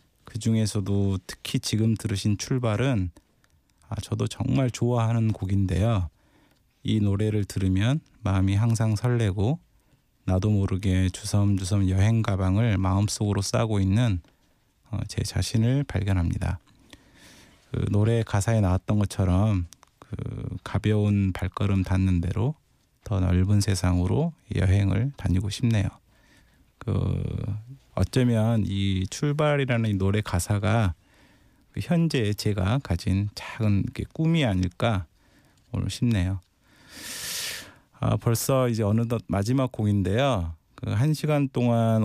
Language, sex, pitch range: Korean, male, 95-115 Hz